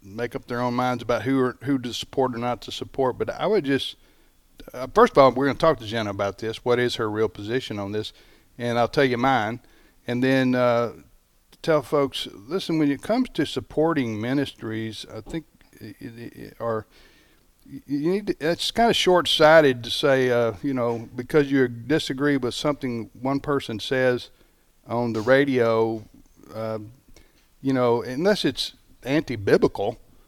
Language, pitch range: English, 115-145 Hz